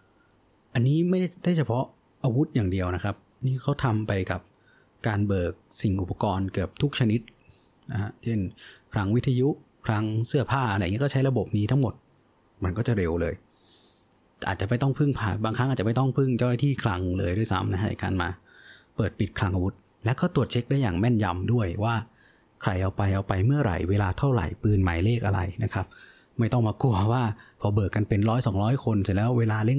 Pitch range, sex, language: 100-130 Hz, male, Thai